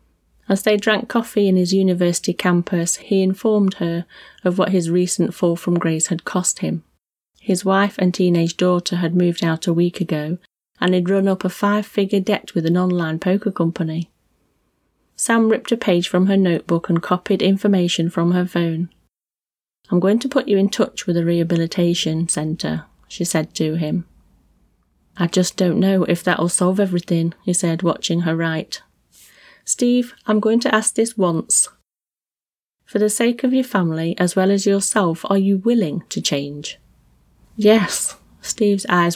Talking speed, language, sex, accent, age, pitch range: 170 wpm, English, female, British, 30-49, 165-205 Hz